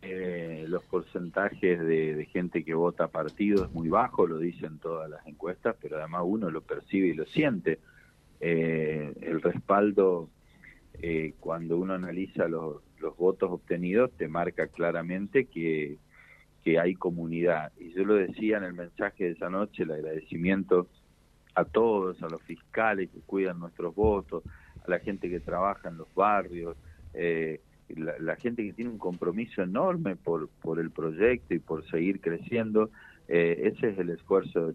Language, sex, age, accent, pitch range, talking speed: Spanish, male, 40-59, Argentinian, 80-95 Hz, 165 wpm